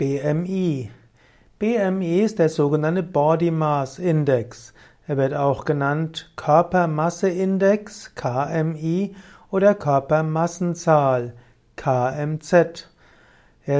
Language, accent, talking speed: German, German, 85 wpm